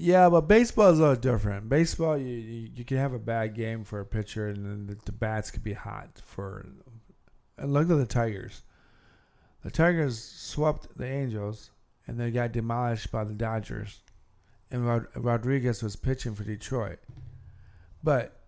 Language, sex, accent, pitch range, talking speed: English, male, American, 110-145 Hz, 170 wpm